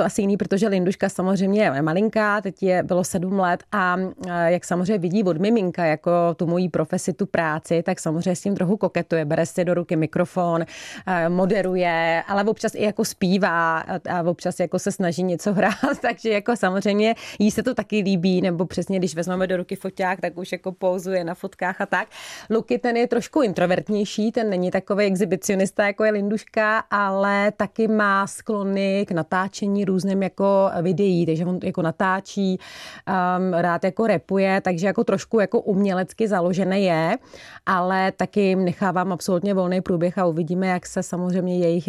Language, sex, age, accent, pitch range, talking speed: Czech, female, 30-49, native, 180-200 Hz, 170 wpm